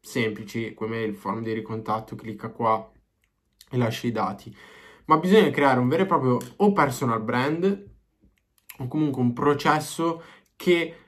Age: 20-39